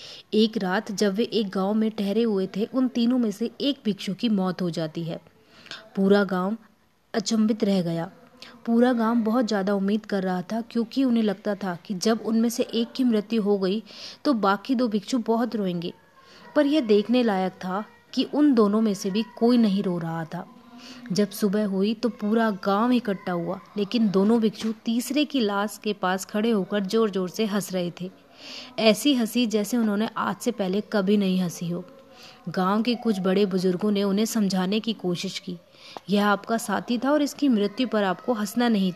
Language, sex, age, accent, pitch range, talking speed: Hindi, female, 20-39, native, 195-230 Hz, 150 wpm